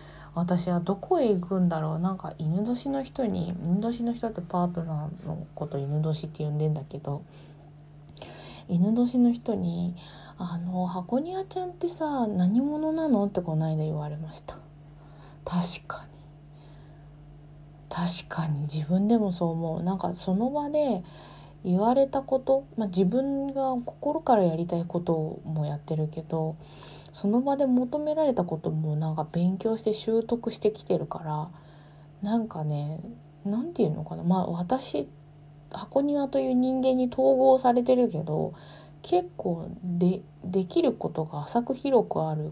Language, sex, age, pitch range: Japanese, female, 20-39, 150-205 Hz